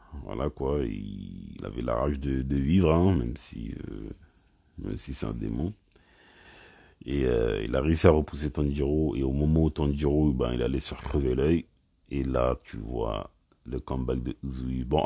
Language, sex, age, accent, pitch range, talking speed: French, male, 50-69, French, 65-80 Hz, 185 wpm